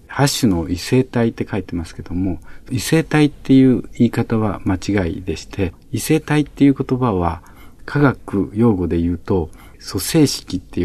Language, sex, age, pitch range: Japanese, male, 50-69, 90-130 Hz